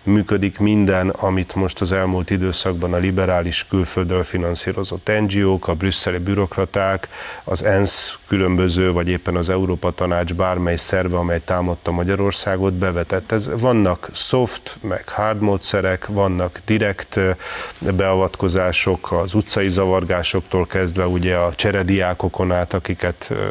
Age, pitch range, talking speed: 30-49, 90-105 Hz, 120 wpm